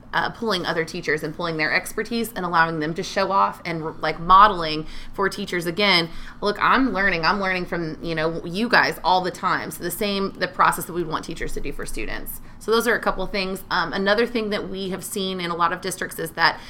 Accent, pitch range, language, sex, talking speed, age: American, 165-195 Hz, English, female, 240 wpm, 30-49